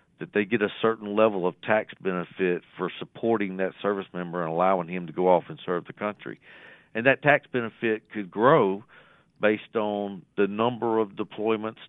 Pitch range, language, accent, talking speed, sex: 95-120 Hz, English, American, 180 wpm, male